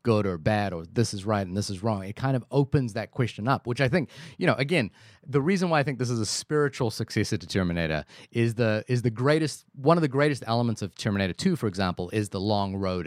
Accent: American